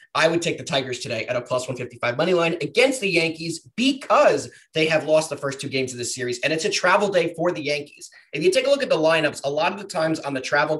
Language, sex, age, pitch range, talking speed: English, male, 30-49, 135-175 Hz, 280 wpm